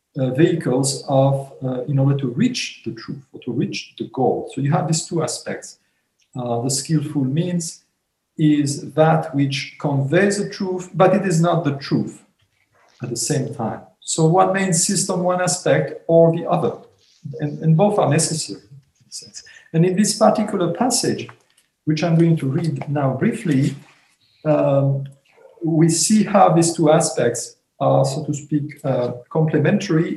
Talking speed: 160 wpm